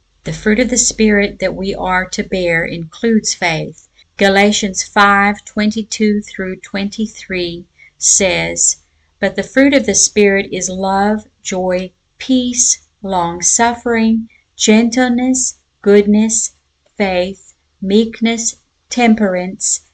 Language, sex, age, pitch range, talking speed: English, female, 50-69, 185-225 Hz, 105 wpm